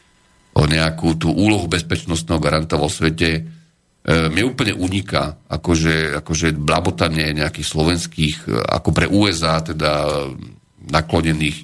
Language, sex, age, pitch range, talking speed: Slovak, male, 40-59, 75-90 Hz, 115 wpm